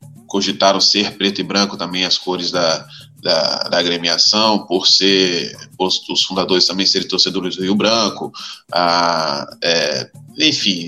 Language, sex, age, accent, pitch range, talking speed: Portuguese, male, 20-39, Brazilian, 95-115 Hz, 145 wpm